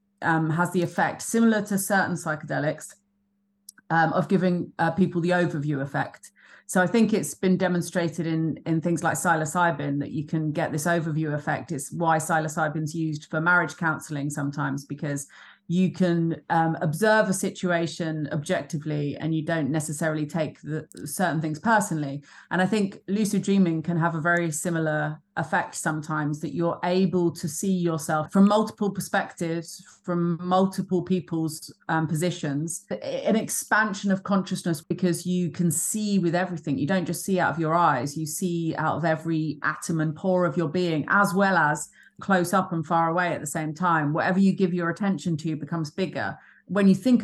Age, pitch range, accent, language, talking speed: 30-49, 155-190 Hz, British, English, 175 wpm